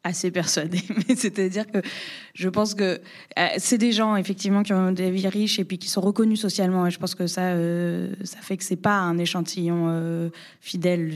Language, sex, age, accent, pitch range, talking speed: French, female, 20-39, French, 170-195 Hz, 200 wpm